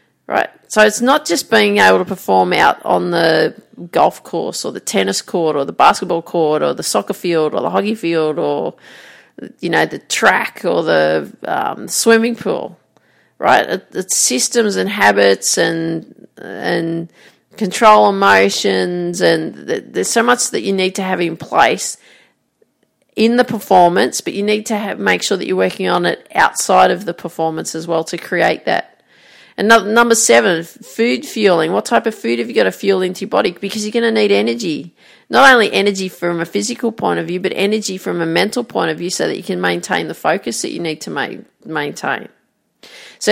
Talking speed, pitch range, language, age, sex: 190 wpm, 160-215 Hz, English, 40-59, female